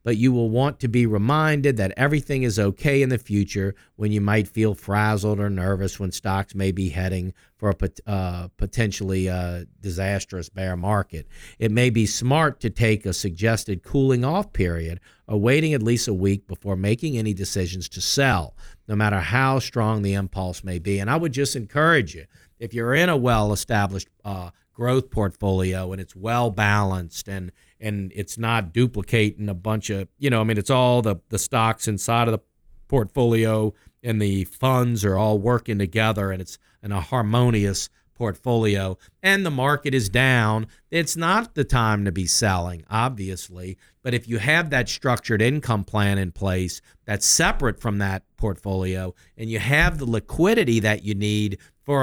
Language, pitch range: English, 95-125 Hz